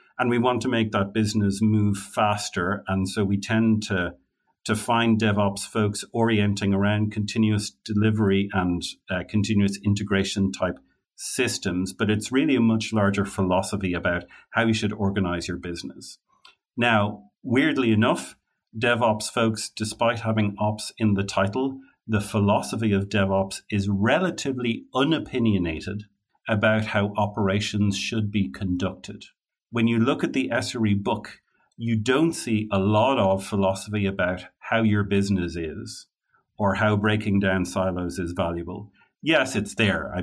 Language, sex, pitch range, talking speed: English, male, 95-110 Hz, 145 wpm